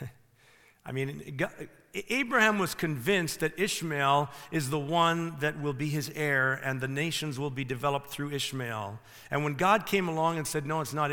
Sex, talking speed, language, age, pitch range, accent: male, 185 wpm, English, 50-69, 115-145 Hz, American